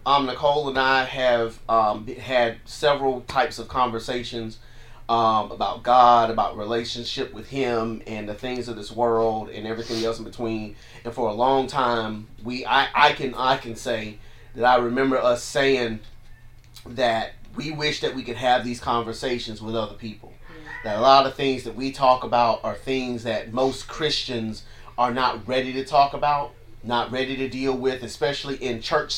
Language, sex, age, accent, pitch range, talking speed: English, male, 30-49, American, 115-135 Hz, 175 wpm